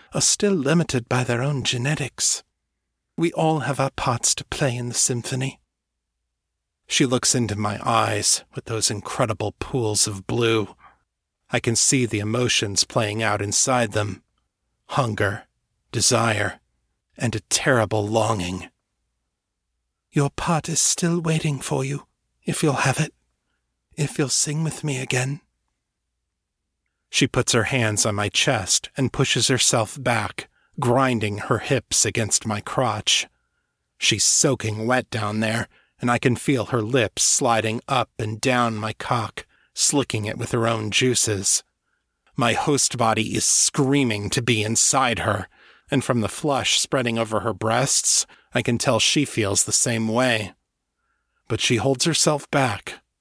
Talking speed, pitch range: 145 wpm, 105-135 Hz